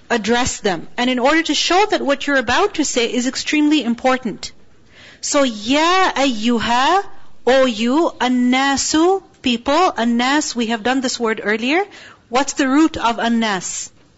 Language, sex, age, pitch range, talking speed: English, female, 40-59, 235-310 Hz, 150 wpm